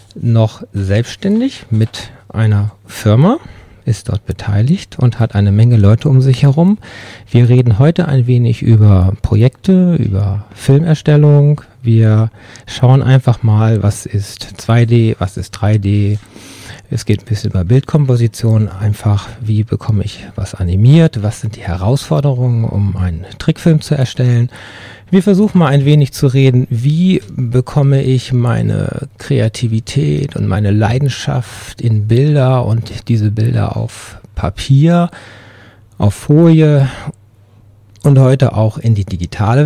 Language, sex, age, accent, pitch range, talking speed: German, male, 40-59, German, 105-130 Hz, 130 wpm